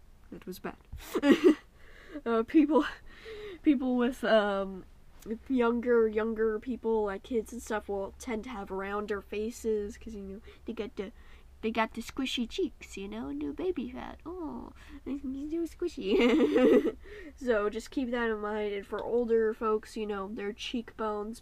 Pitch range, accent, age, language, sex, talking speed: 195-235 Hz, American, 10-29, English, female, 150 wpm